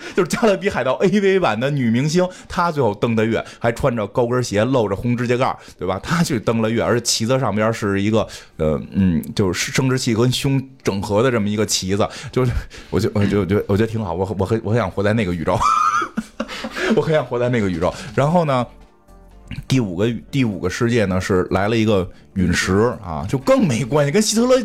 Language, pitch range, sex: Chinese, 95-130 Hz, male